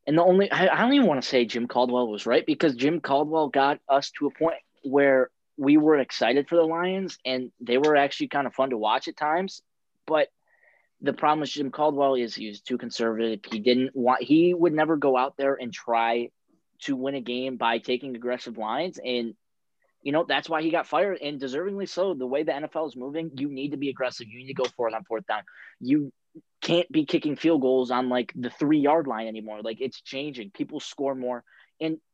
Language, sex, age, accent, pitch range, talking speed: English, male, 20-39, American, 120-150 Hz, 220 wpm